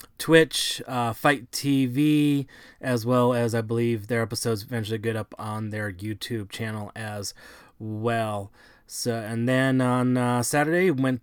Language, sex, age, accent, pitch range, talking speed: English, male, 30-49, American, 120-140 Hz, 145 wpm